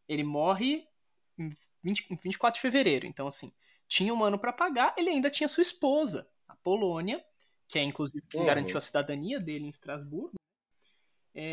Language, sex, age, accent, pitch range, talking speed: Portuguese, male, 20-39, Brazilian, 150-220 Hz, 170 wpm